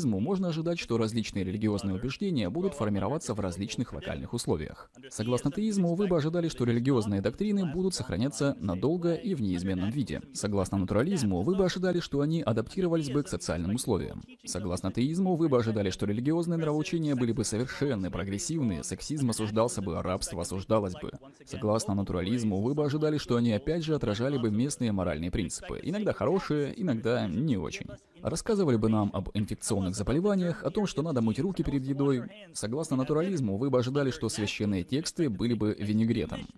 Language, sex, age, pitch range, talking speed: Russian, male, 20-39, 105-160 Hz, 165 wpm